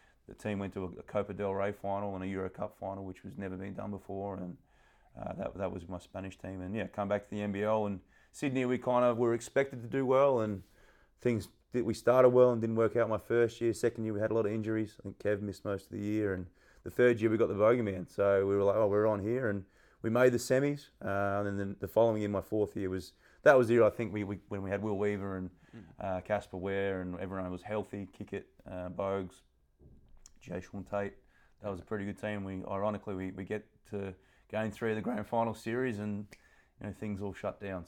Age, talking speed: 30-49, 255 wpm